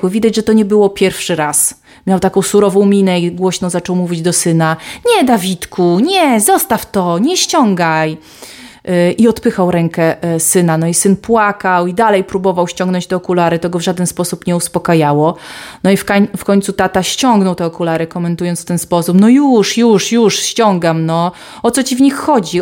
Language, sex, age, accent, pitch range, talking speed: Polish, female, 30-49, native, 170-200 Hz, 185 wpm